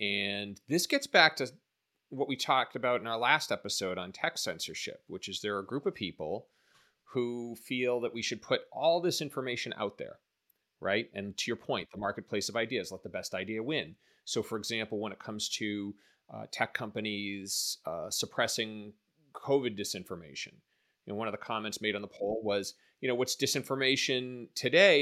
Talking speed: 185 wpm